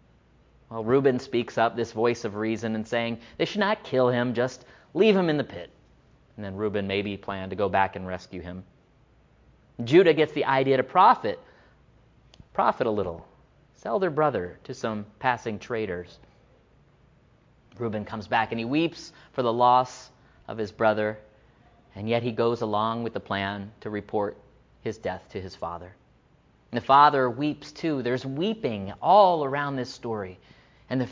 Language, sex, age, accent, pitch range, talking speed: English, male, 30-49, American, 105-135 Hz, 170 wpm